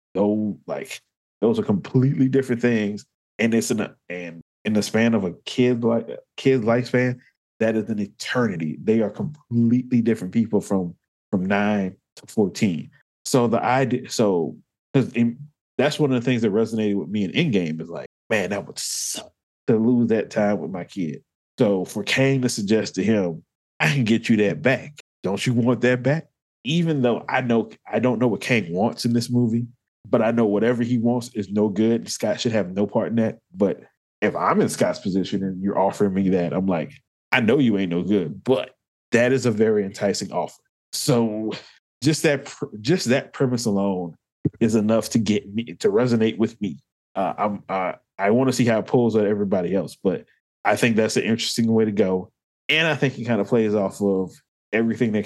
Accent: American